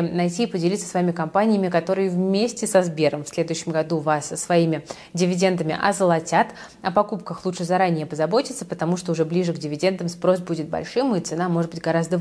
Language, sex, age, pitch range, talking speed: Russian, female, 20-39, 165-200 Hz, 175 wpm